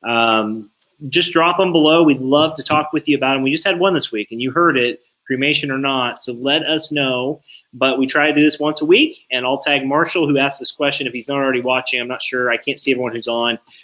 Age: 30-49